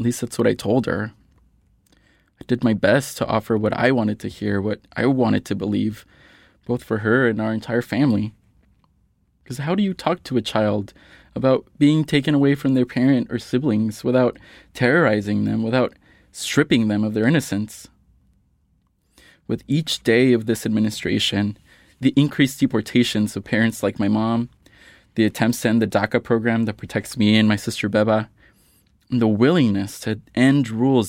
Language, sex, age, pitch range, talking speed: English, male, 20-39, 105-125 Hz, 175 wpm